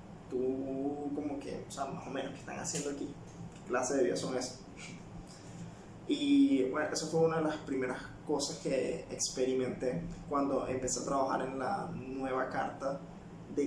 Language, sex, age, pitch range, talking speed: Spanish, male, 20-39, 130-160 Hz, 165 wpm